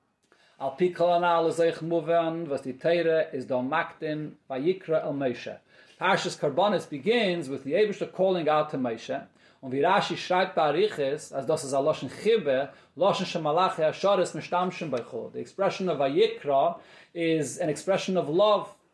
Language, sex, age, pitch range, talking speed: English, male, 40-59, 150-190 Hz, 140 wpm